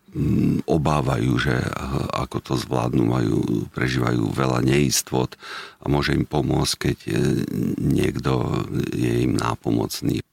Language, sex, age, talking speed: Slovak, male, 50-69, 105 wpm